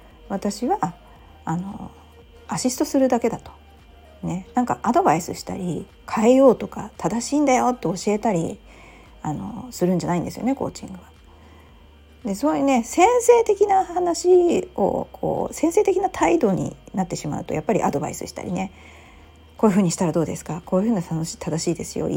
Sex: female